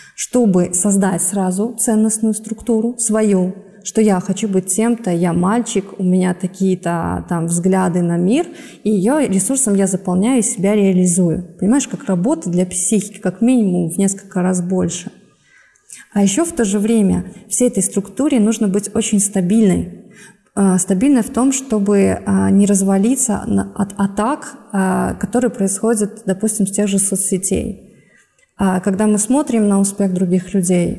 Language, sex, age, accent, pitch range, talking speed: Russian, female, 20-39, native, 190-220 Hz, 145 wpm